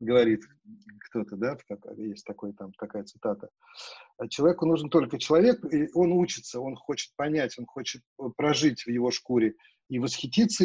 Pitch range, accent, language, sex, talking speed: 125-165 Hz, native, Russian, male, 145 wpm